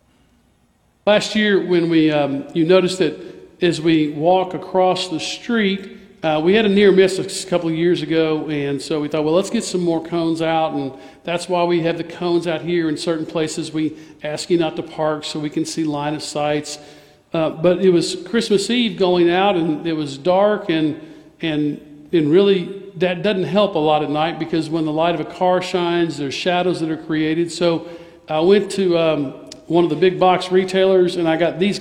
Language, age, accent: English, 50-69, American